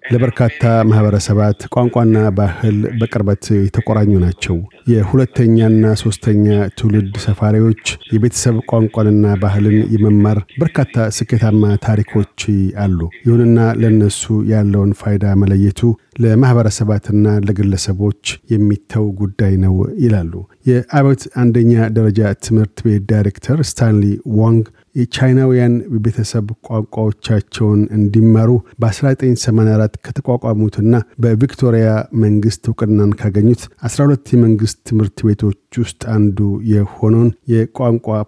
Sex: male